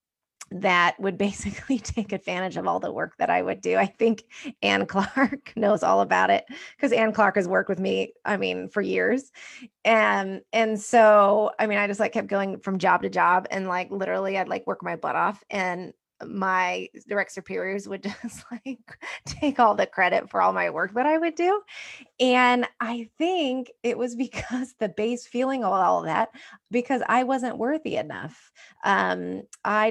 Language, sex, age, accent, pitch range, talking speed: English, female, 20-39, American, 190-245 Hz, 190 wpm